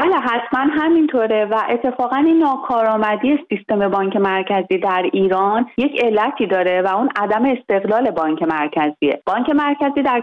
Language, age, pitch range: Persian, 30-49, 185-240 Hz